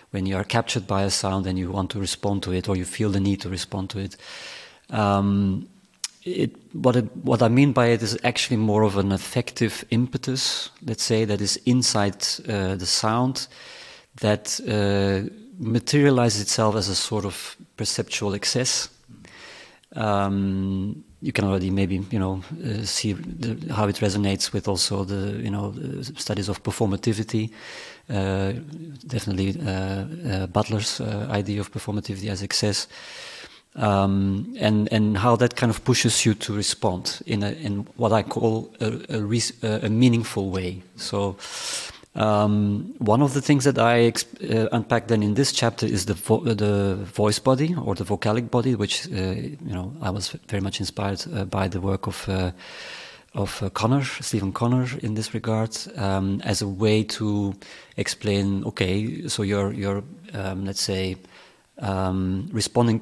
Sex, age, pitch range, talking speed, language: male, 30-49, 100-115 Hz, 170 wpm, English